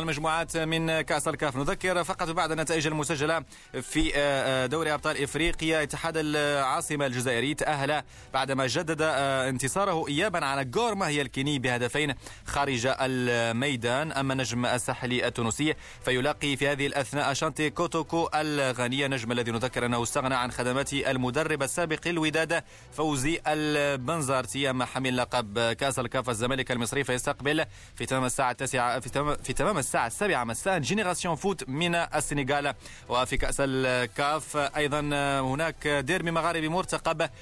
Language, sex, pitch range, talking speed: Arabic, male, 130-165 Hz, 130 wpm